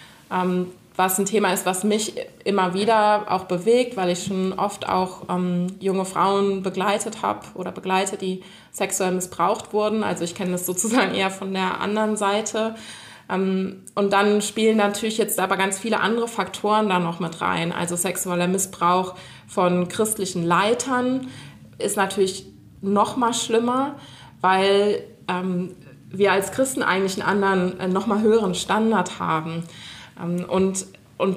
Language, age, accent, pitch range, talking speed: German, 20-39, German, 180-210 Hz, 150 wpm